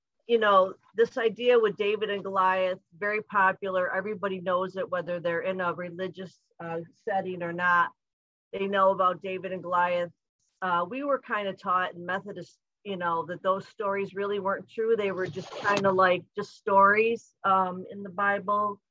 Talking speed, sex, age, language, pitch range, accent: 180 wpm, female, 40-59, English, 175-200 Hz, American